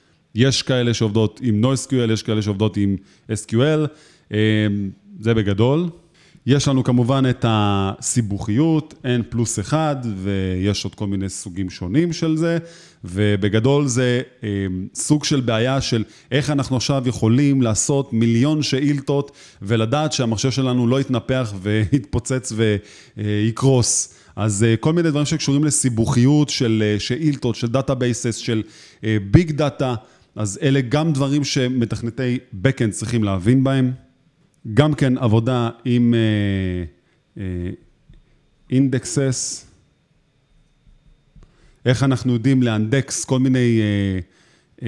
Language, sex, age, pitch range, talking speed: Hebrew, male, 30-49, 110-145 Hz, 115 wpm